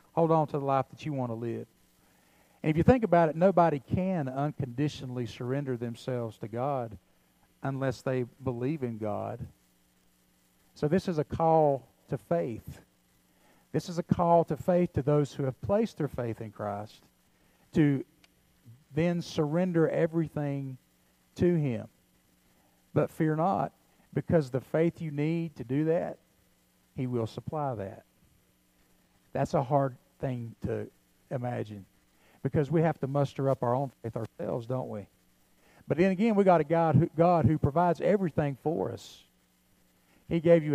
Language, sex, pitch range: English, male, 100-160 Hz